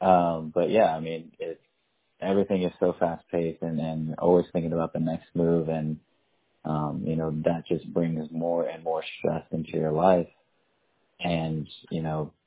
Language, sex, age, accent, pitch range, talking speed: English, male, 20-39, American, 80-85 Hz, 160 wpm